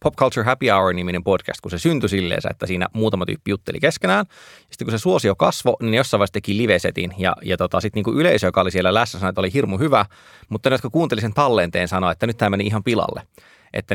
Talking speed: 235 wpm